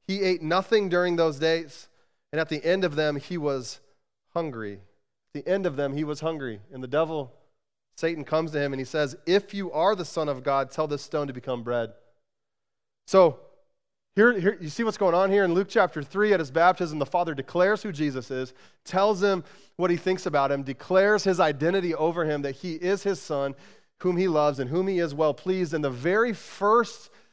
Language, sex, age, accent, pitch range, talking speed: English, male, 30-49, American, 140-180 Hz, 215 wpm